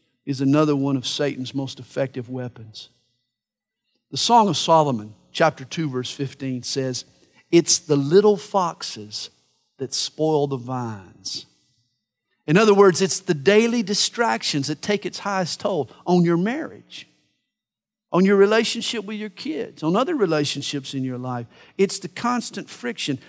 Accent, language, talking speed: American, English, 145 wpm